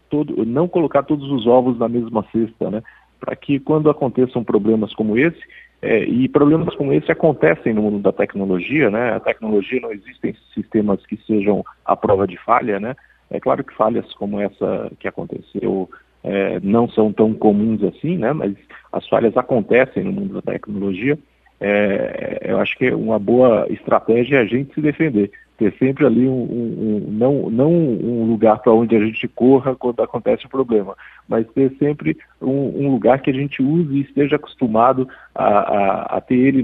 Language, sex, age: Portuguese, male, 40-59